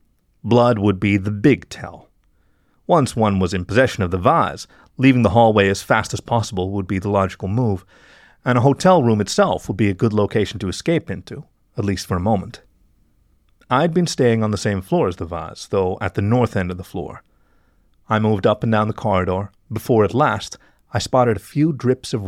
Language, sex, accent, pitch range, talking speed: English, male, American, 95-120 Hz, 210 wpm